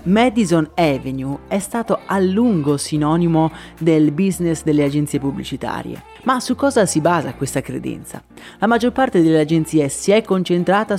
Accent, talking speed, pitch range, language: native, 150 wpm, 150-205 Hz, Italian